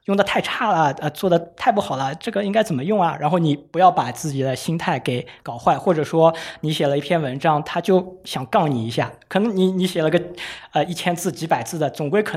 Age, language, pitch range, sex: 20-39, Chinese, 145-185 Hz, male